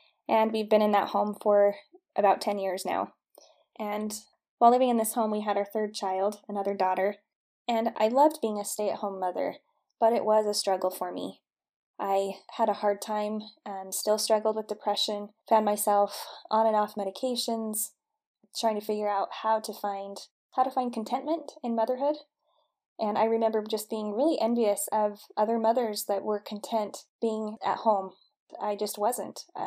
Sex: female